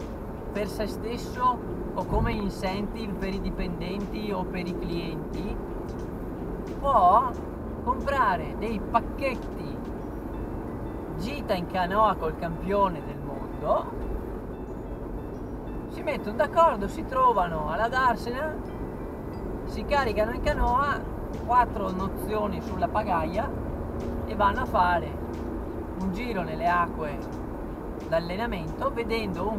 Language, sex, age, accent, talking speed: Italian, male, 30-49, native, 100 wpm